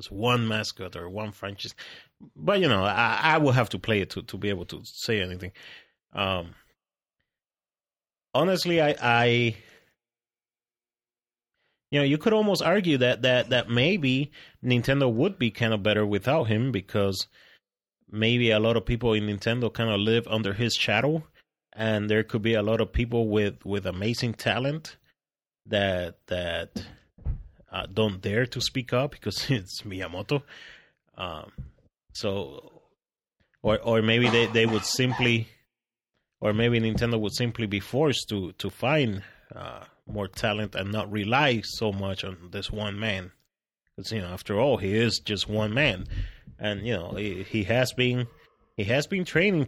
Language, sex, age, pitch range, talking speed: English, male, 30-49, 100-120 Hz, 160 wpm